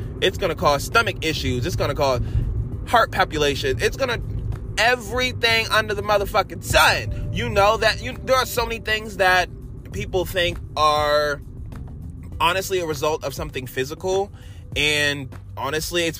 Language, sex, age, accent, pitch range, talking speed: English, male, 20-39, American, 115-155 Hz, 155 wpm